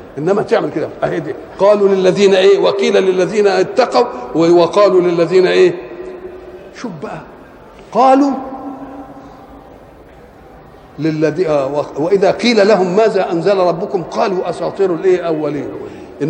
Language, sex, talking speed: Arabic, male, 105 wpm